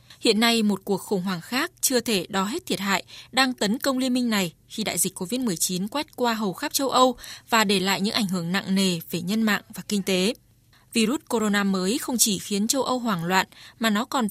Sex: female